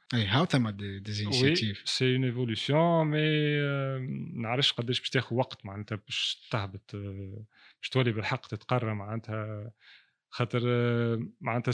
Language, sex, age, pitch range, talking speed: Arabic, male, 30-49, 115-140 Hz, 120 wpm